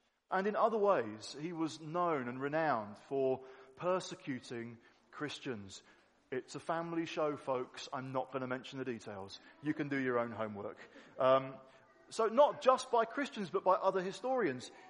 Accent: British